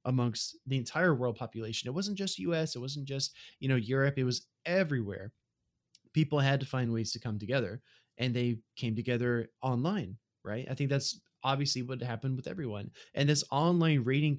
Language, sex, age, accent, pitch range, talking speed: English, male, 20-39, American, 115-145 Hz, 185 wpm